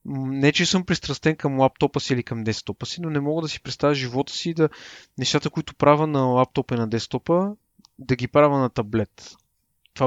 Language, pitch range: Bulgarian, 120-160 Hz